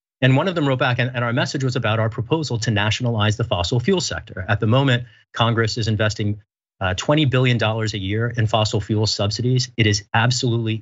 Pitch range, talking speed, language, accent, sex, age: 110-135 Hz, 200 wpm, English, American, male, 40-59